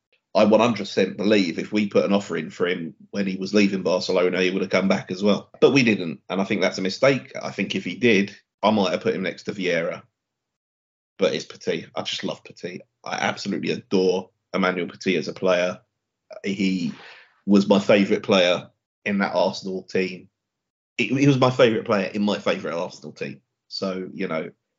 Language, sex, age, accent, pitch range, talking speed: English, male, 30-49, British, 95-105 Hz, 200 wpm